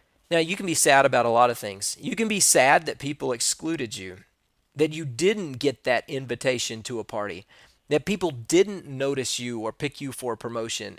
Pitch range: 120-155 Hz